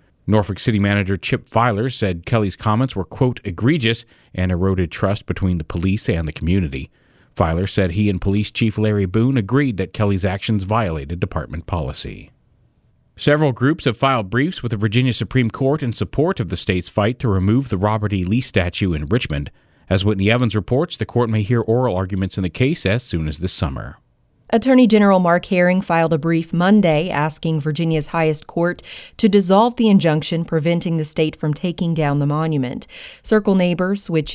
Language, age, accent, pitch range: English, 40-59, American, 110-165 Hz